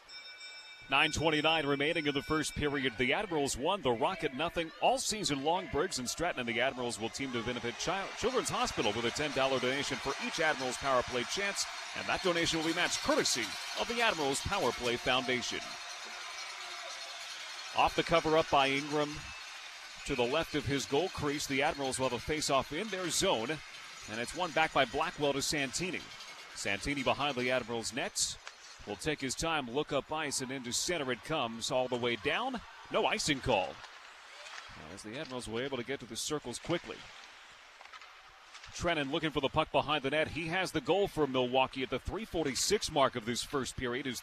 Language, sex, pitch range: English, male, 125-160 Hz